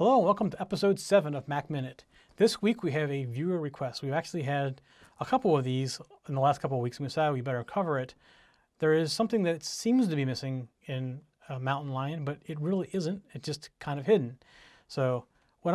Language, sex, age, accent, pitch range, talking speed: English, male, 40-59, American, 135-175 Hz, 215 wpm